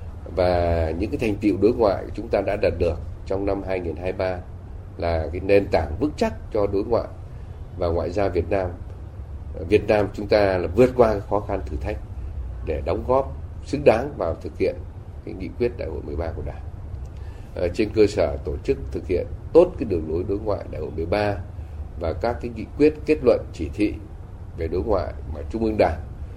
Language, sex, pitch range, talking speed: Vietnamese, male, 85-105 Hz, 200 wpm